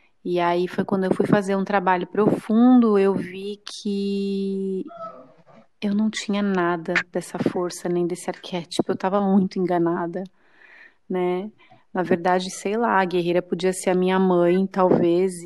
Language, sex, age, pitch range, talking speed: Portuguese, female, 30-49, 185-220 Hz, 150 wpm